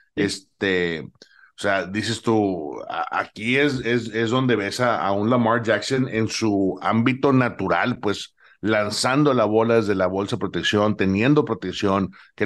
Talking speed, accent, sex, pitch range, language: 155 wpm, Mexican, male, 100-130 Hz, English